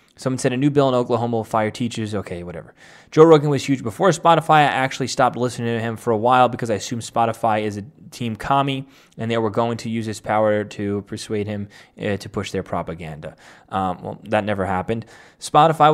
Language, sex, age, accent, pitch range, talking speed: English, male, 20-39, American, 105-130 Hz, 215 wpm